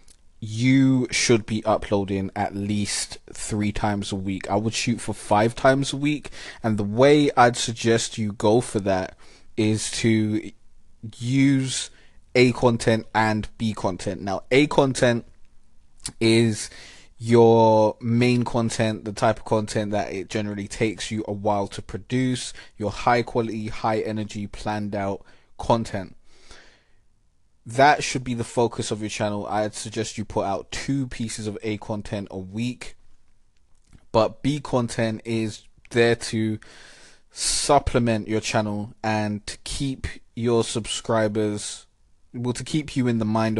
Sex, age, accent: male, 20-39, British